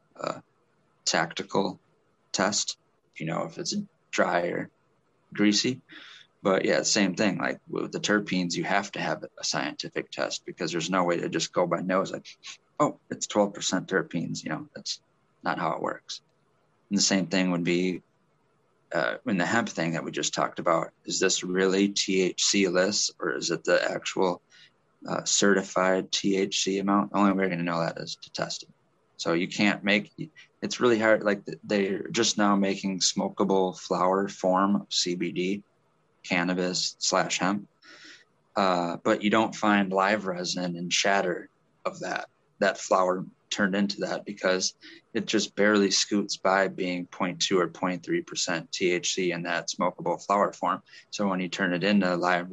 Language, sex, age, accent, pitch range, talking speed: English, male, 20-39, American, 90-100 Hz, 165 wpm